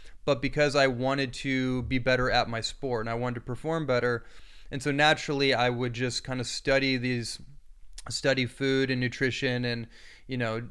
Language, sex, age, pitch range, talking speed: English, male, 20-39, 125-140 Hz, 185 wpm